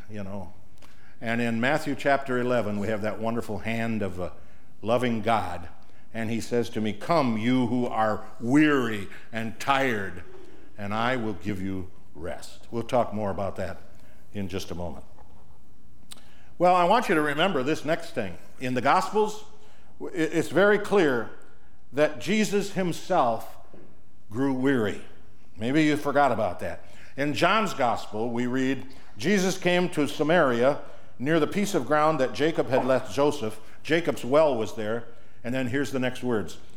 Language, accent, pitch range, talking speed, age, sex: English, American, 110-165 Hz, 160 wpm, 60-79, male